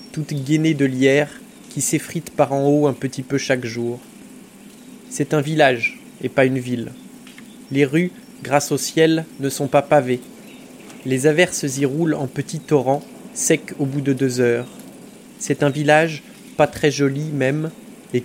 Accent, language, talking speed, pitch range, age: French, French, 170 wpm, 135-185 Hz, 20-39